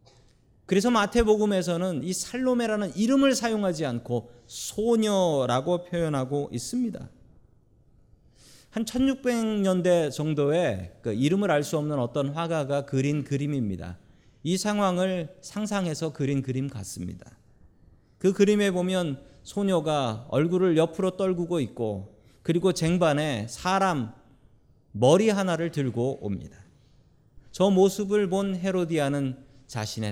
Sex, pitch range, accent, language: male, 115-185 Hz, native, Korean